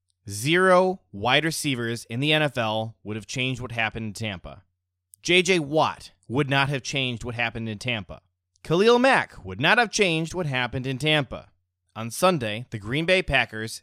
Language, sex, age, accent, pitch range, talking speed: English, male, 20-39, American, 105-145 Hz, 170 wpm